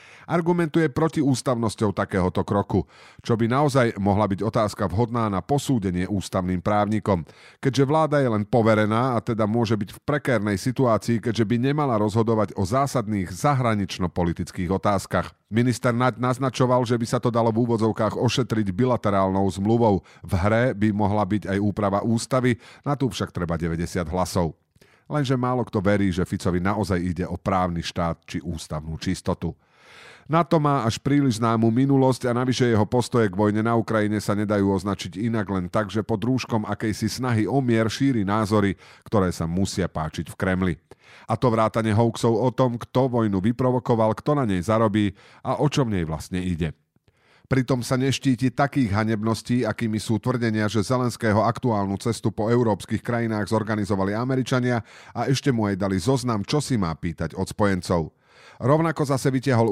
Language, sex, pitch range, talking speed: Slovak, male, 95-125 Hz, 165 wpm